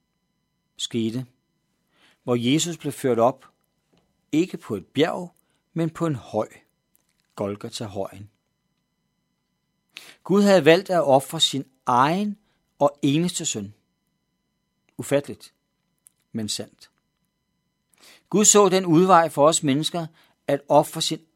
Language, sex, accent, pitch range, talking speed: Danish, male, native, 130-175 Hz, 110 wpm